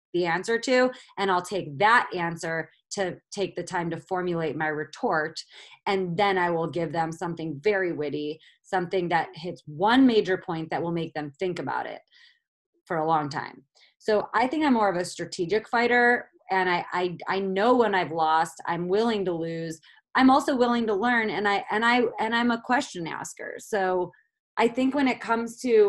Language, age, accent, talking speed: English, 30-49, American, 195 wpm